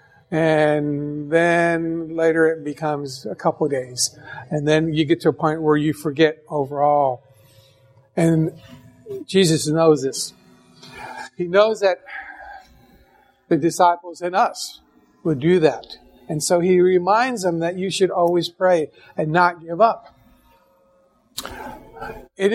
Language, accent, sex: English, American, male